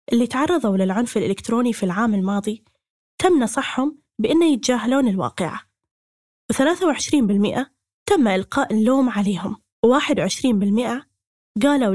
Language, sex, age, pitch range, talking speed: Arabic, female, 10-29, 205-255 Hz, 95 wpm